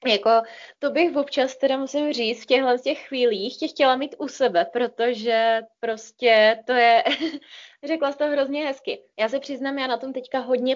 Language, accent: Czech, native